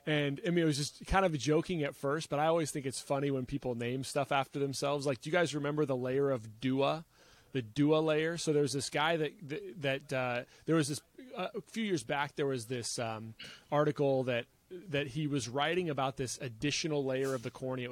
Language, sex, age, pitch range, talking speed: English, male, 30-49, 130-155 Hz, 230 wpm